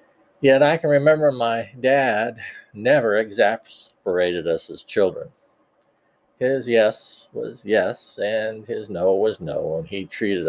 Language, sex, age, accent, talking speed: English, male, 50-69, American, 130 wpm